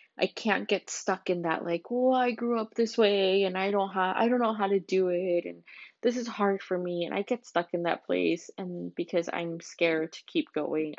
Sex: female